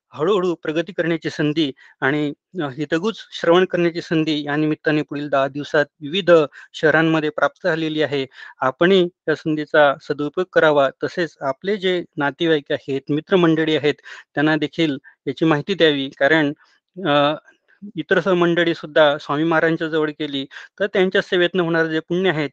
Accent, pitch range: native, 145-170 Hz